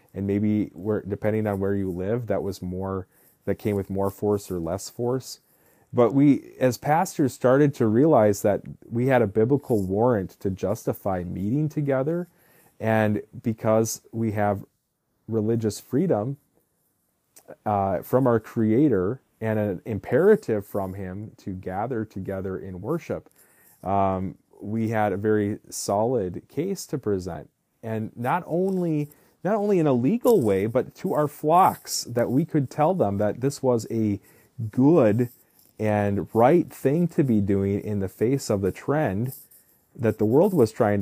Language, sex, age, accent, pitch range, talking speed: English, male, 30-49, American, 100-135 Hz, 155 wpm